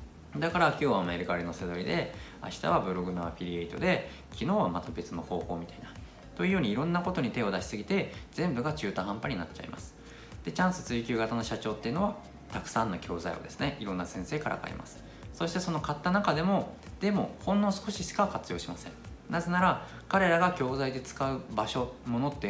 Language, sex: Japanese, male